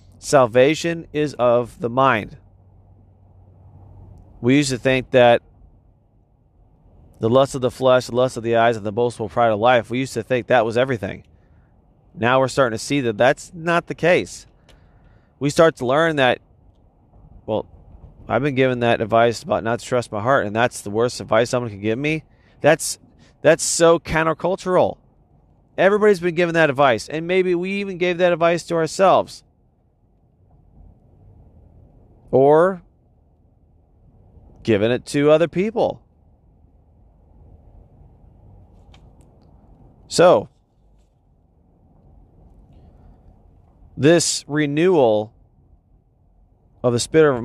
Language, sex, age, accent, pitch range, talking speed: English, male, 30-49, American, 95-150 Hz, 130 wpm